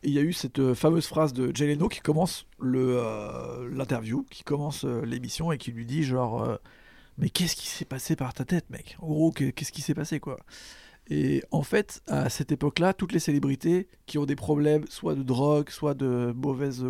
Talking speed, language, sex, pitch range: 220 wpm, French, male, 130-155 Hz